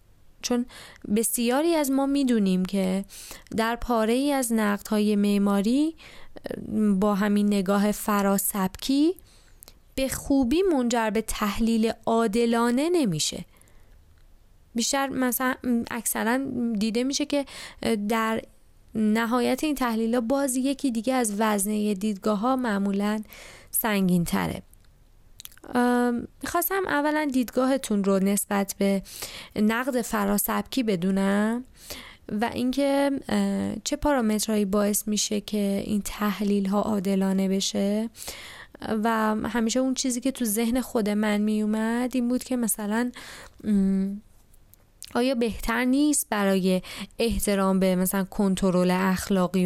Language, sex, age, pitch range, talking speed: Persian, female, 20-39, 195-245 Hz, 105 wpm